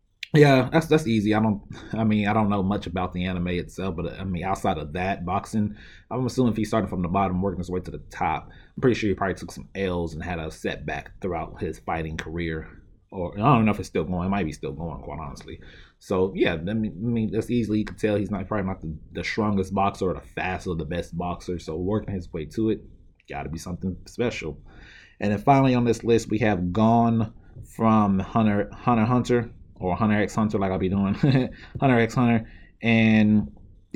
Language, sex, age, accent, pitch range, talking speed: English, male, 20-39, American, 85-110 Hz, 230 wpm